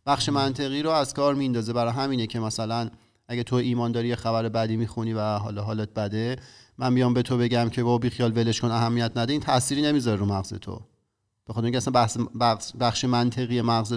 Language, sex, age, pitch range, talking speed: Persian, male, 30-49, 110-135 Hz, 200 wpm